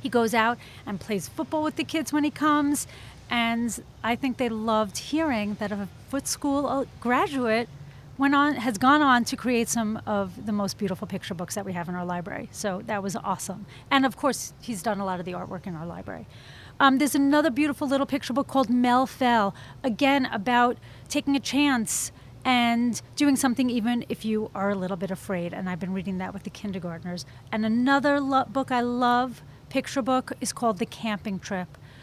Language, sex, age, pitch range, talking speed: English, female, 30-49, 195-255 Hz, 195 wpm